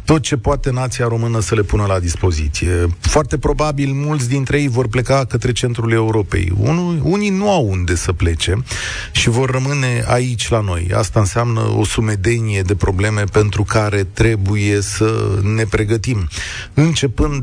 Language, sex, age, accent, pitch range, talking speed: Romanian, male, 30-49, native, 105-125 Hz, 155 wpm